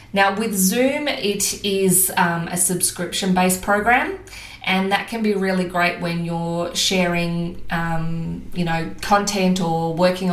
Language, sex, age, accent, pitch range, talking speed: English, female, 20-39, Australian, 175-205 Hz, 140 wpm